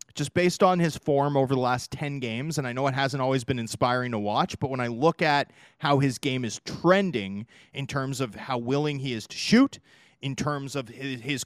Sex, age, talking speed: male, 30-49, 225 wpm